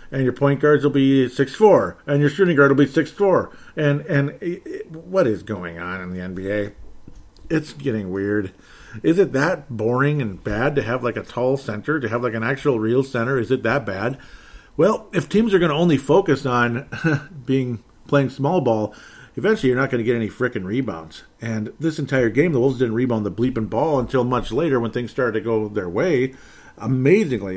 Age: 50-69